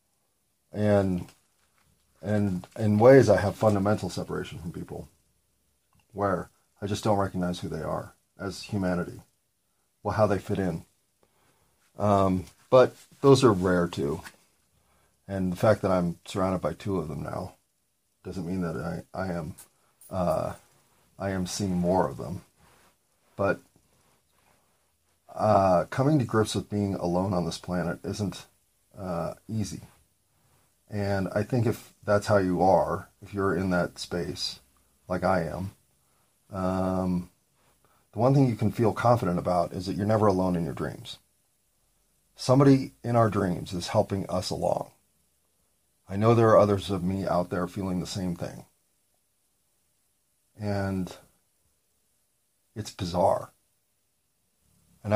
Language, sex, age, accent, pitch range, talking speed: English, male, 40-59, American, 90-105 Hz, 140 wpm